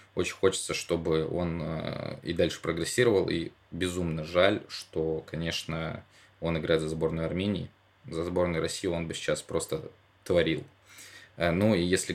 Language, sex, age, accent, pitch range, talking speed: Russian, male, 20-39, native, 80-95 Hz, 140 wpm